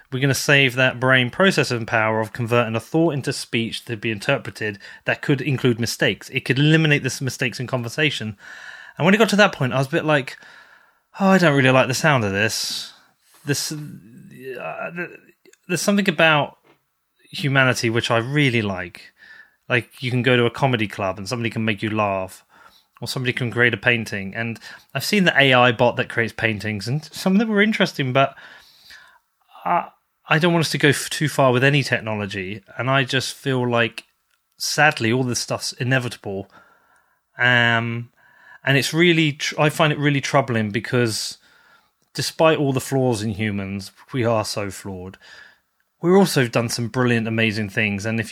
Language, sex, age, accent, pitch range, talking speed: English, male, 30-49, British, 115-145 Hz, 185 wpm